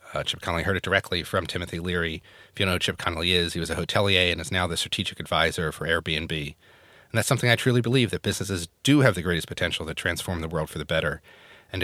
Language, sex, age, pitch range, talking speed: English, male, 30-49, 90-115 Hz, 255 wpm